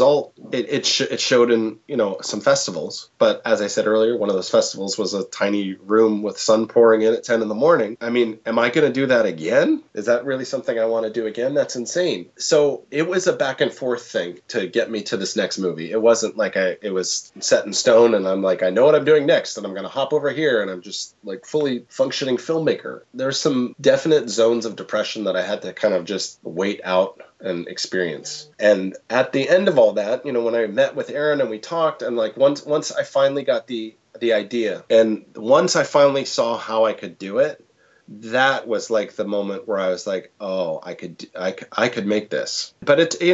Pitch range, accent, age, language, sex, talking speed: 105-140 Hz, American, 30-49, English, male, 235 wpm